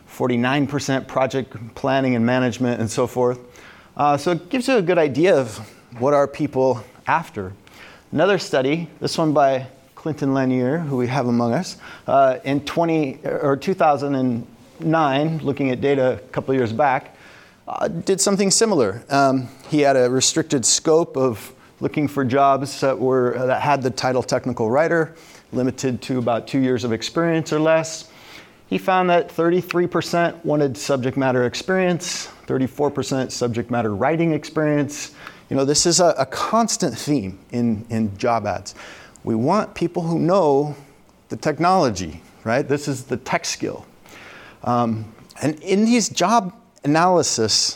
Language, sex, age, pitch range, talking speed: English, male, 30-49, 125-160 Hz, 150 wpm